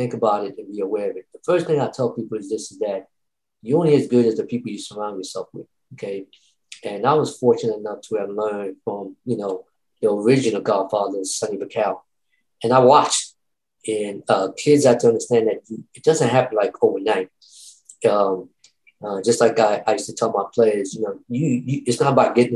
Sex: male